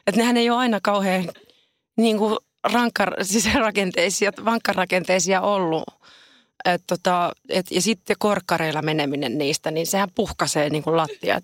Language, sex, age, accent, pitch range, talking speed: Finnish, female, 30-49, native, 160-215 Hz, 120 wpm